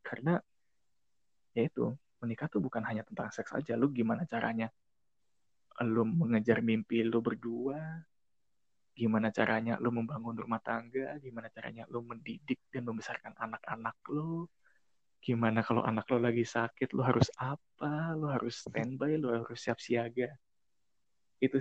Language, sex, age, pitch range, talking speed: Indonesian, male, 20-39, 110-125 Hz, 135 wpm